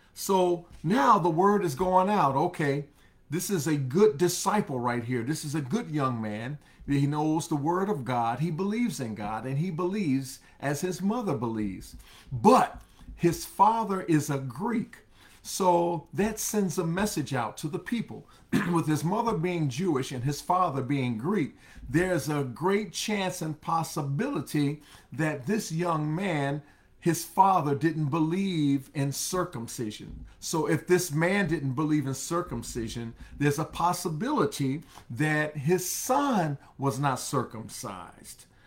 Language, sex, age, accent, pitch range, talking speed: English, male, 50-69, American, 140-185 Hz, 150 wpm